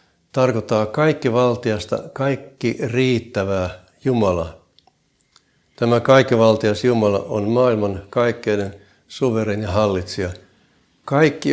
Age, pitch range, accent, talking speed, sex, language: 60-79, 100-125 Hz, native, 80 wpm, male, Finnish